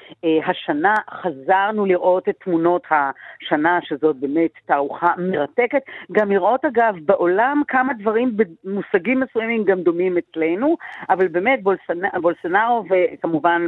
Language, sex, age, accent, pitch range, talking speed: Hebrew, female, 50-69, native, 180-245 Hz, 110 wpm